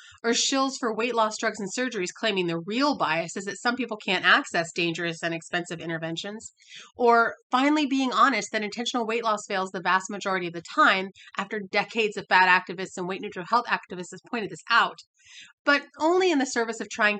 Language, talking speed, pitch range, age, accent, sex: English, 200 wpm, 190-245 Hz, 30-49, American, female